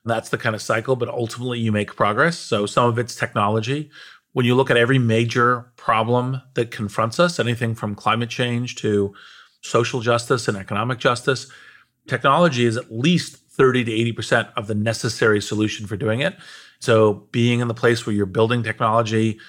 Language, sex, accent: English, male, American